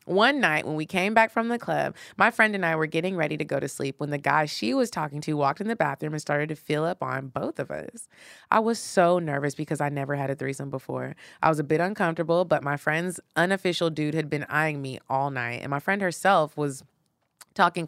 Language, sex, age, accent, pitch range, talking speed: English, female, 20-39, American, 145-185 Hz, 245 wpm